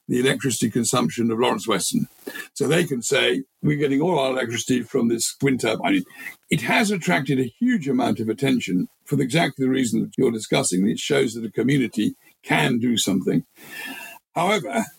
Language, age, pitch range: English, 60-79, 125-165 Hz